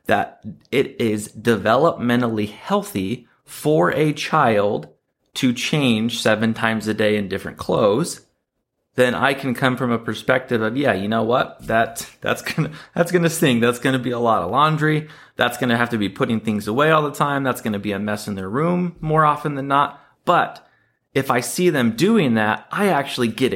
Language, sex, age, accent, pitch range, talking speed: English, male, 30-49, American, 110-140 Hz, 205 wpm